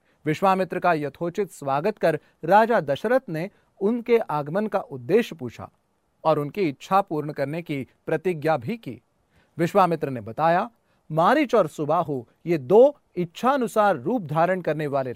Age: 30-49